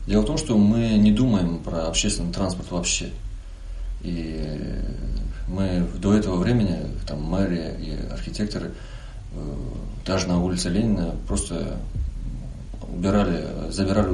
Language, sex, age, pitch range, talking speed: Russian, male, 30-49, 85-105 Hz, 110 wpm